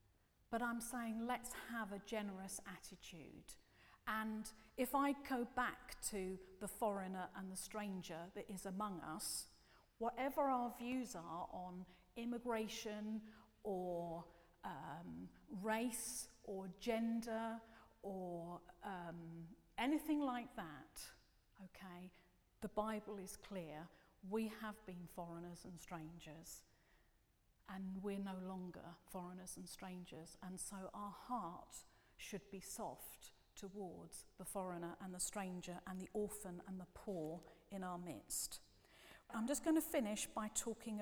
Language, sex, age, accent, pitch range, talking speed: English, female, 40-59, British, 180-225 Hz, 125 wpm